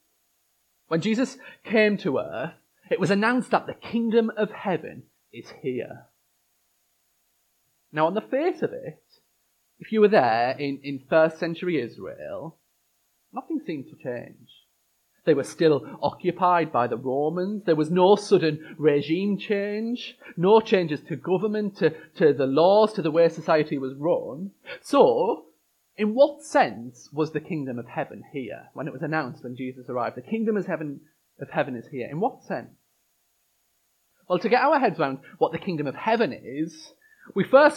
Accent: British